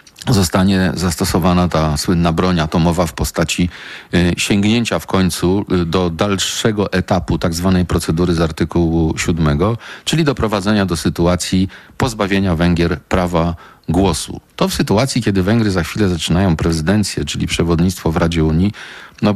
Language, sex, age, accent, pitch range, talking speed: Polish, male, 40-59, native, 85-100 Hz, 135 wpm